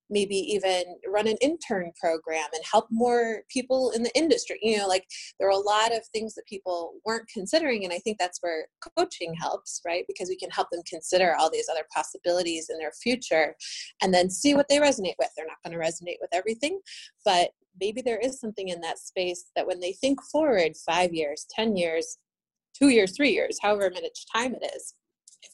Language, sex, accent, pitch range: English, female, American, 175-230 Hz